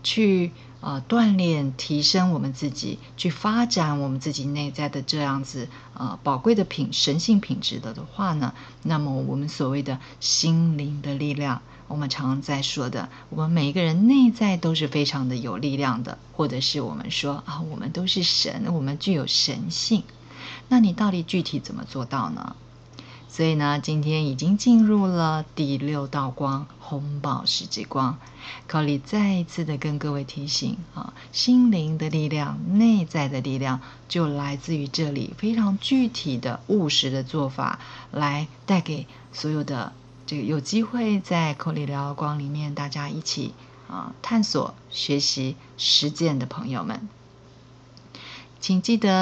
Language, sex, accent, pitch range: Chinese, female, native, 135-175 Hz